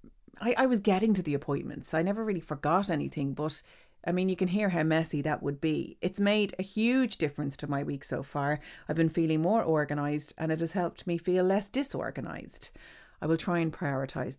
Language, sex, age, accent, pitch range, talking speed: English, female, 30-49, Irish, 150-205 Hz, 215 wpm